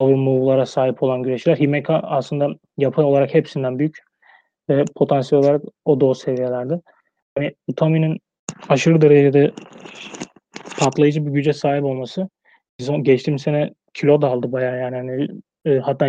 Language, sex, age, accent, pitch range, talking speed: Turkish, male, 30-49, native, 135-155 Hz, 125 wpm